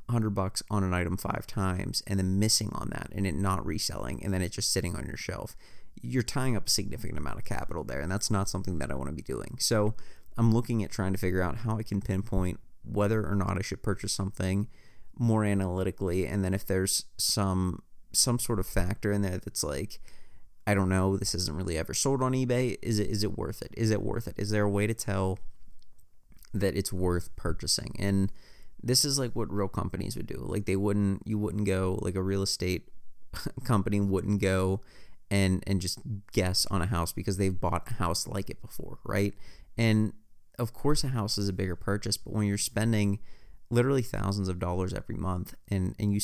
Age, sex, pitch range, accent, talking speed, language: 30-49, male, 95-110 Hz, American, 215 wpm, English